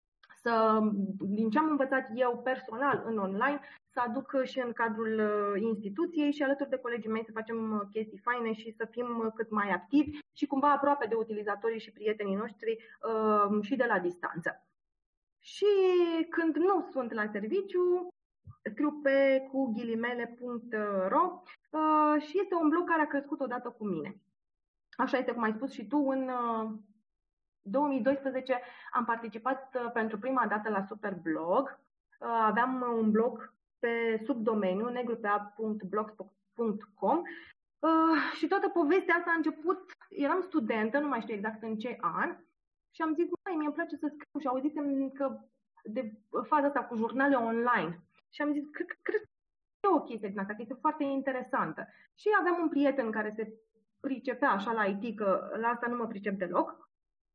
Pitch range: 220-295 Hz